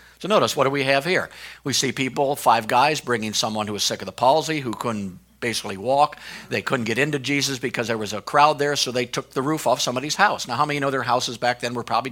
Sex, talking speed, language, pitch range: male, 265 wpm, English, 120-160 Hz